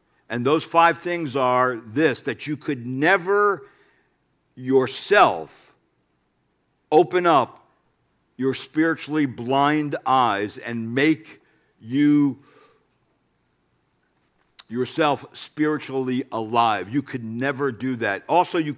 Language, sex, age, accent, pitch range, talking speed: English, male, 60-79, American, 105-145 Hz, 95 wpm